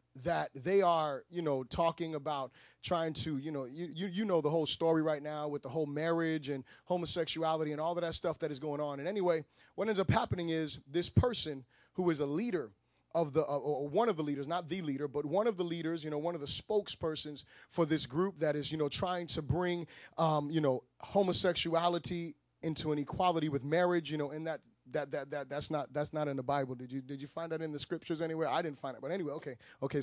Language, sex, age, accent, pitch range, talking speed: English, male, 30-49, American, 135-170 Hz, 240 wpm